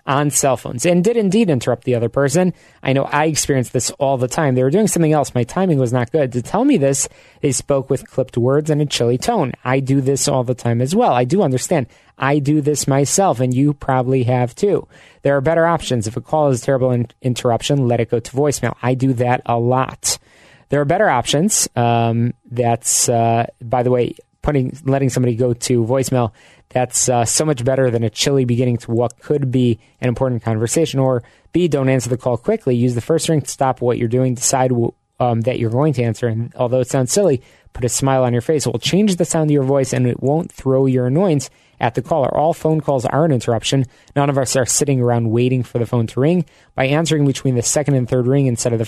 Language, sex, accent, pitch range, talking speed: English, male, American, 120-145 Hz, 240 wpm